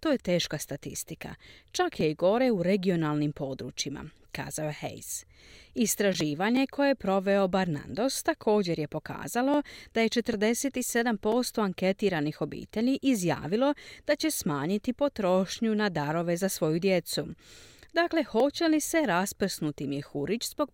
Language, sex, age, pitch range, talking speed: Croatian, female, 40-59, 160-245 Hz, 125 wpm